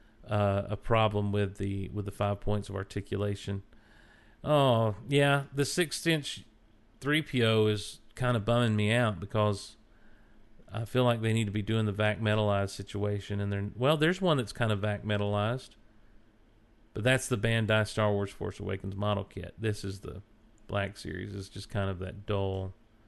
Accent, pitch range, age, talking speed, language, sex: American, 105-130 Hz, 40-59, 175 wpm, English, male